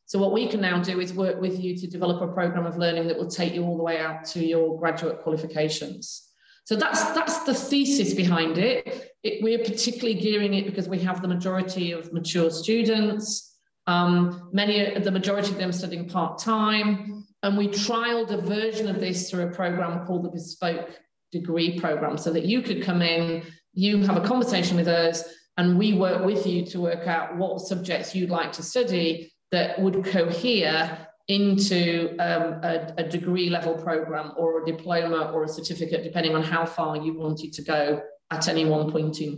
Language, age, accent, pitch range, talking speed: English, 40-59, British, 165-200 Hz, 195 wpm